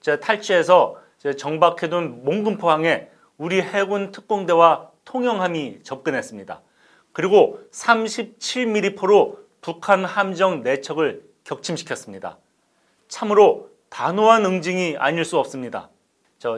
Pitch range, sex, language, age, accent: 155-190 Hz, male, Korean, 40-59, native